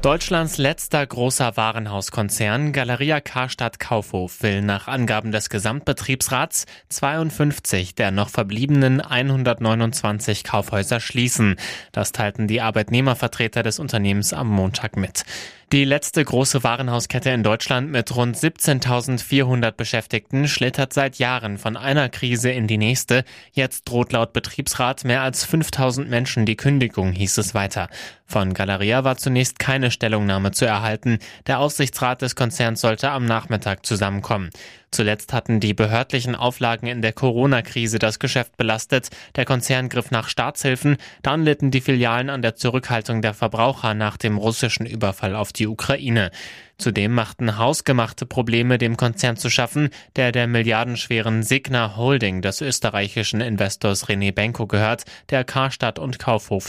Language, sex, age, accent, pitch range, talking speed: German, male, 20-39, German, 110-130 Hz, 140 wpm